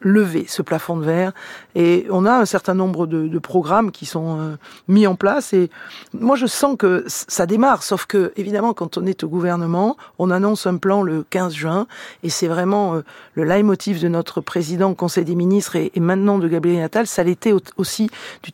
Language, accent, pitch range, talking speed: French, French, 180-225 Hz, 205 wpm